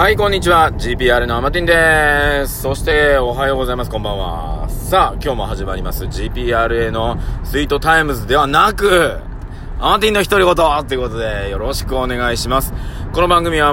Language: Japanese